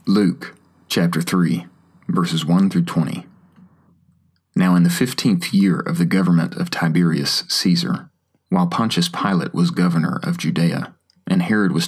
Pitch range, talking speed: 85-90 Hz, 140 wpm